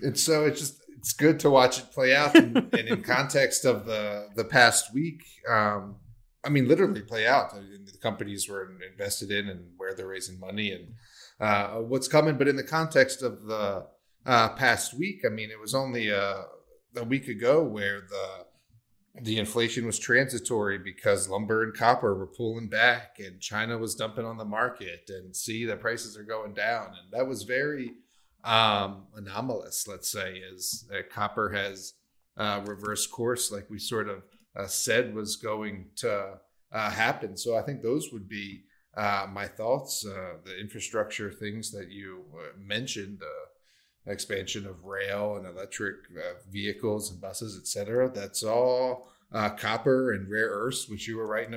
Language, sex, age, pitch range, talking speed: English, male, 30-49, 100-120 Hz, 175 wpm